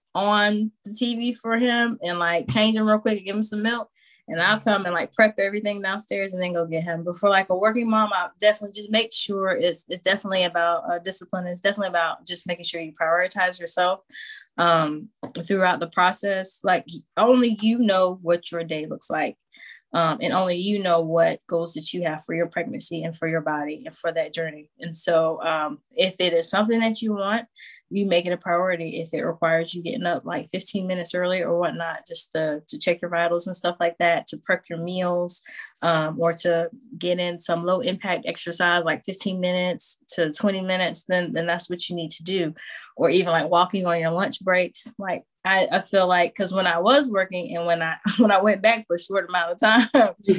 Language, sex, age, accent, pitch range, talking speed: English, female, 20-39, American, 170-210 Hz, 220 wpm